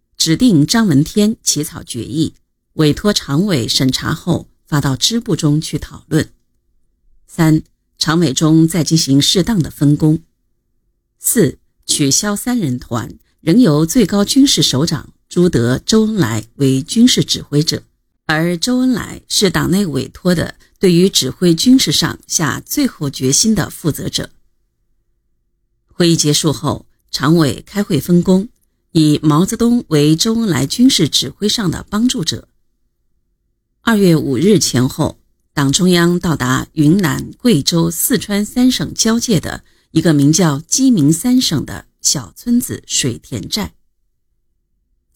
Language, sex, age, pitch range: Chinese, female, 50-69, 145-200 Hz